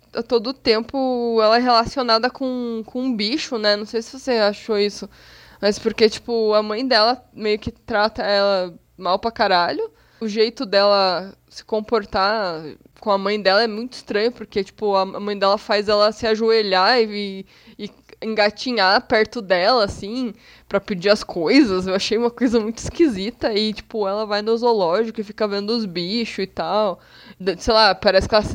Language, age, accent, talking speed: Portuguese, 20-39, Brazilian, 180 wpm